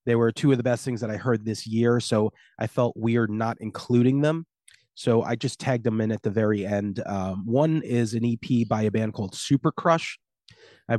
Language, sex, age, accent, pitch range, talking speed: English, male, 30-49, American, 115-140 Hz, 225 wpm